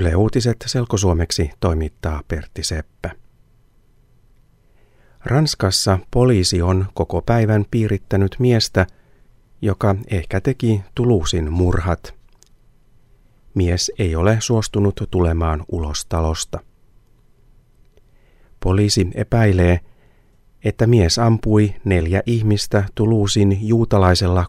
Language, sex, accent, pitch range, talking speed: Finnish, male, native, 90-120 Hz, 80 wpm